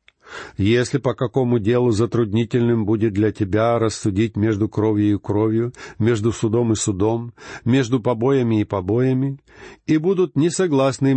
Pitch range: 110-155 Hz